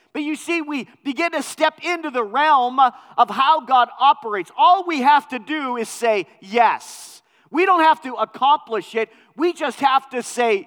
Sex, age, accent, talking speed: male, 40-59, American, 185 wpm